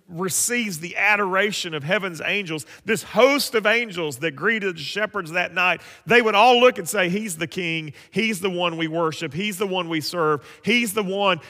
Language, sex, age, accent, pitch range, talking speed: English, male, 40-59, American, 100-160 Hz, 200 wpm